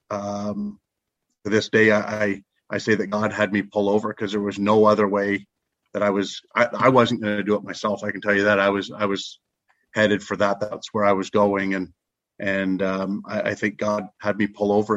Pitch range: 100-110 Hz